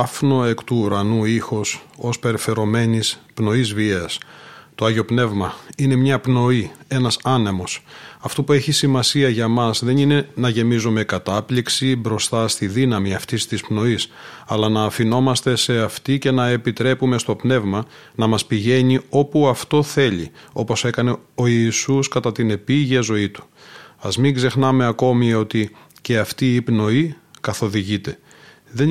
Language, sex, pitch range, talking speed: Greek, male, 110-130 Hz, 145 wpm